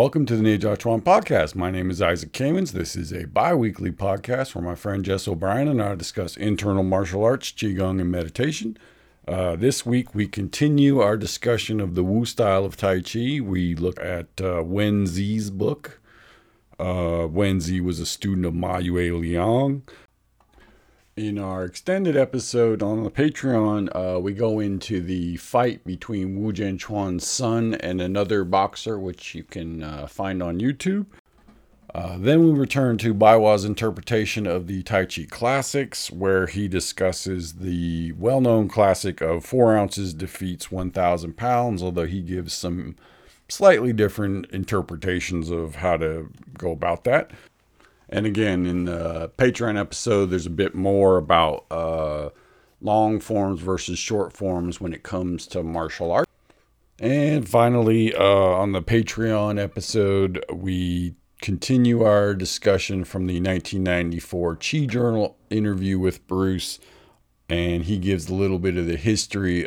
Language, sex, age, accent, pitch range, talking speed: English, male, 50-69, American, 90-110 Hz, 150 wpm